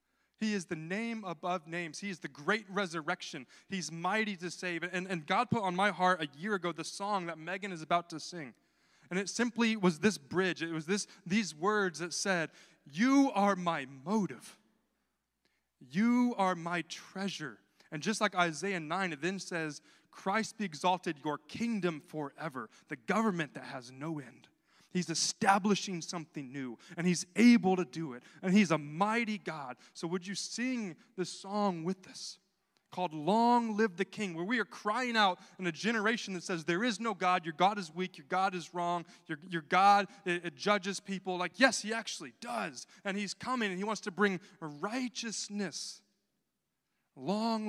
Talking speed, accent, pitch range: 180 wpm, American, 170-205 Hz